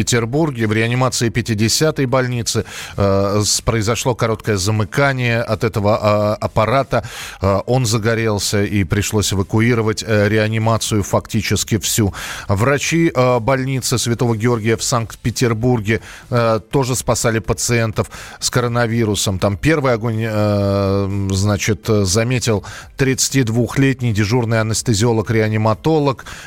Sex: male